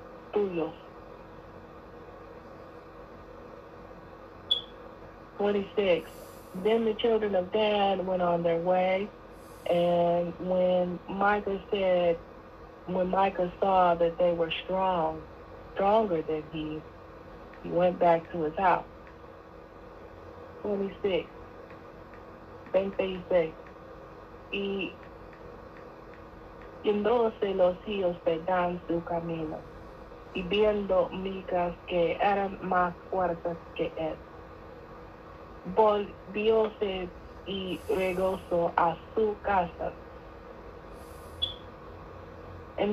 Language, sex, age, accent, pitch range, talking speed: English, female, 40-59, American, 170-195 Hz, 60 wpm